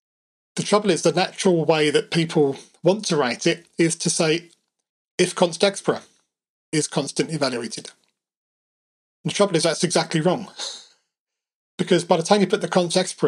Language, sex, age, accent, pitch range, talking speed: English, male, 40-59, British, 155-185 Hz, 160 wpm